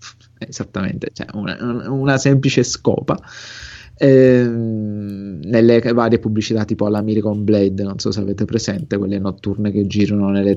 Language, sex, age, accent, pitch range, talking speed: Italian, male, 20-39, native, 105-125 Hz, 135 wpm